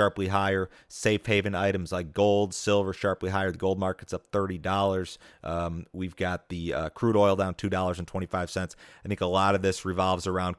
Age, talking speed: 30-49, 180 wpm